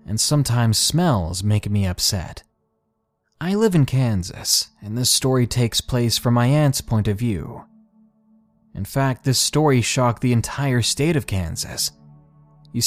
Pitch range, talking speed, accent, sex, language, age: 100-150 Hz, 150 wpm, American, male, English, 20-39